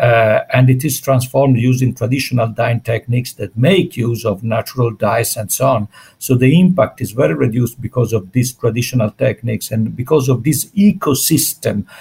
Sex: male